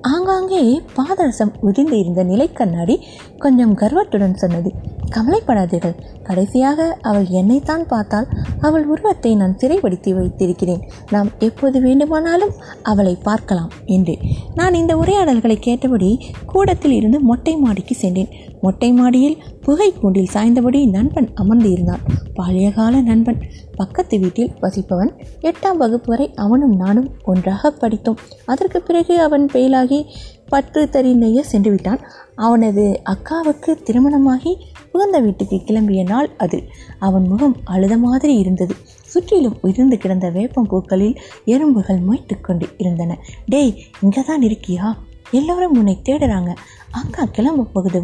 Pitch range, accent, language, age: 195-275 Hz, native, Tamil, 20-39